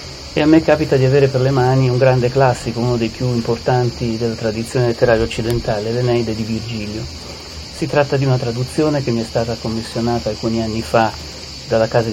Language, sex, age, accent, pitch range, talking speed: Italian, male, 40-59, native, 110-130 Hz, 190 wpm